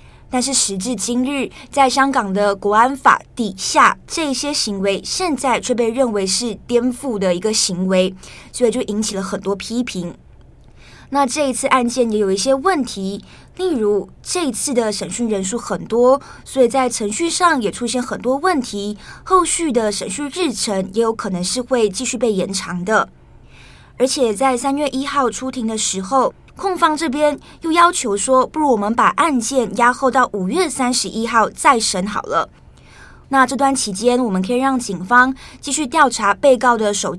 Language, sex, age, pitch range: Chinese, female, 20-39, 210-270 Hz